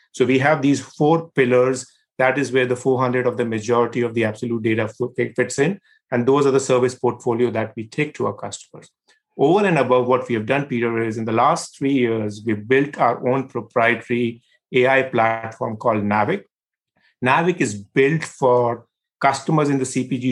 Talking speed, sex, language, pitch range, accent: 185 wpm, male, English, 120-140 Hz, Indian